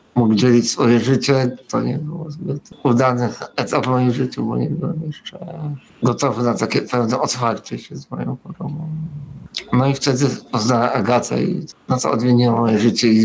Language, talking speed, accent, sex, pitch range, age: Polish, 170 wpm, native, male, 120-145 Hz, 50-69